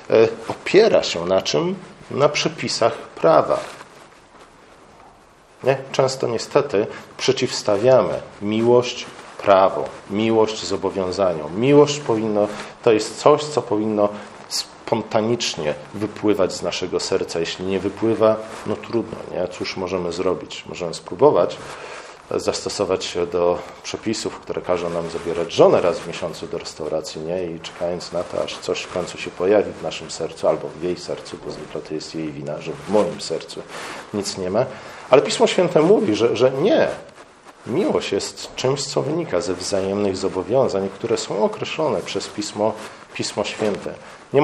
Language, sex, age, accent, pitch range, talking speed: Polish, male, 40-59, native, 90-120 Hz, 145 wpm